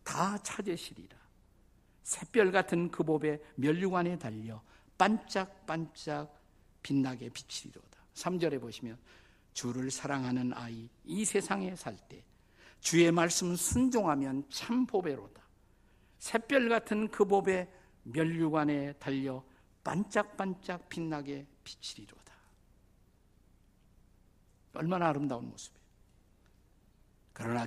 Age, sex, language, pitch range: 50-69, male, Korean, 125-190 Hz